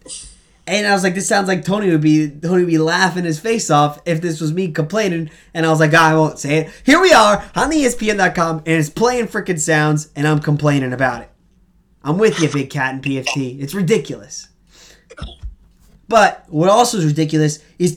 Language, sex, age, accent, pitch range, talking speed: English, male, 20-39, American, 155-200 Hz, 205 wpm